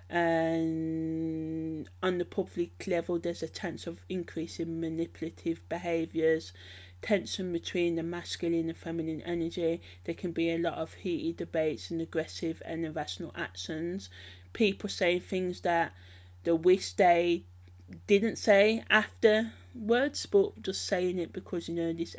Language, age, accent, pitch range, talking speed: English, 30-49, British, 165-190 Hz, 135 wpm